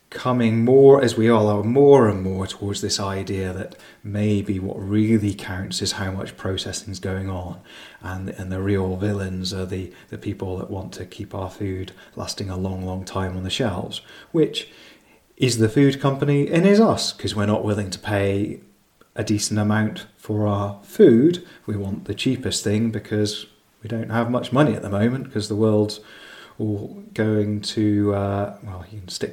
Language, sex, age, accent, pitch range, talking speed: English, male, 30-49, British, 95-110 Hz, 185 wpm